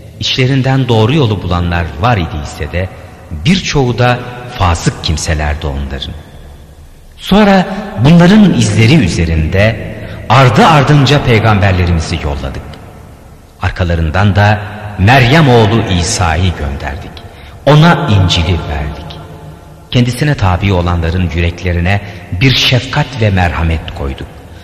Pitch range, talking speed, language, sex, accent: 80-120 Hz, 95 wpm, Turkish, male, native